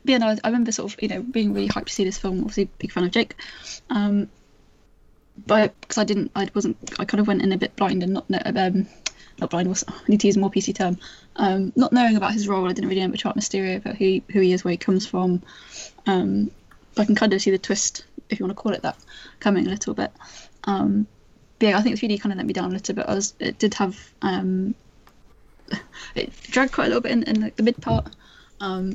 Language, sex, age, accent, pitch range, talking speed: English, female, 10-29, British, 190-220 Hz, 260 wpm